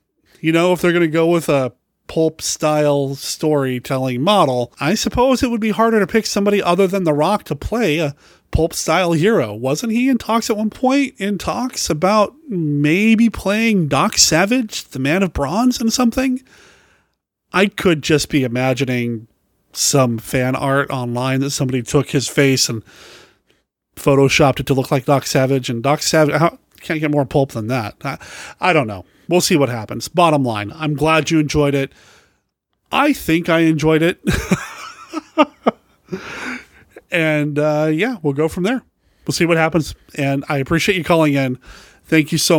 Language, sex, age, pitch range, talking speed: English, male, 30-49, 140-190 Hz, 175 wpm